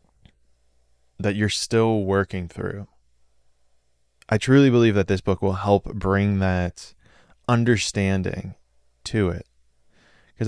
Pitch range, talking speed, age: 85-105 Hz, 110 wpm, 20-39